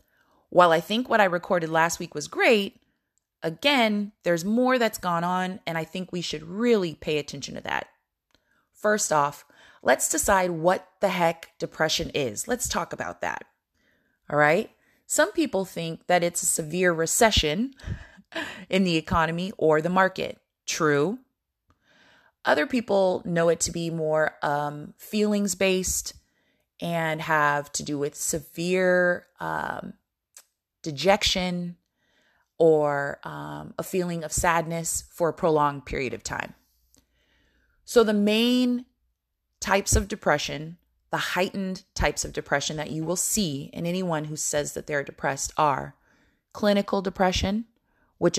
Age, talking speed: 20-39, 140 wpm